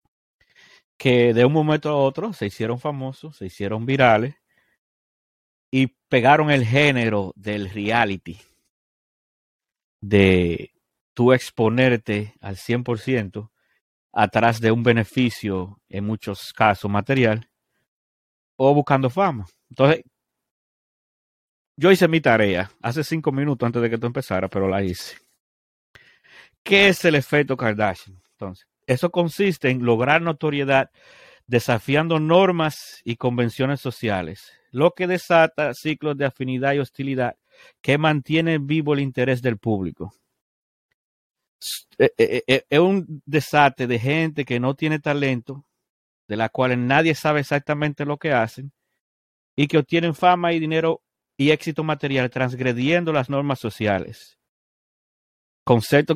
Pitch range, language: 110-150 Hz, Spanish